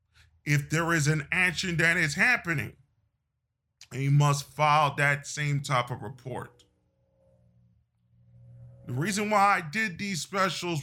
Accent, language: American, English